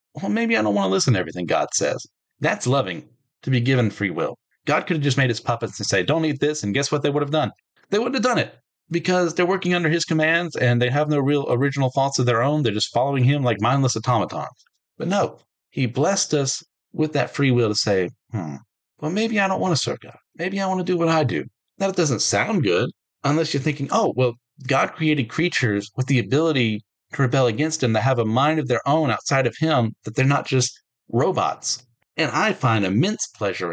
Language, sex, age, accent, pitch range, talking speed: English, male, 40-59, American, 115-155 Hz, 235 wpm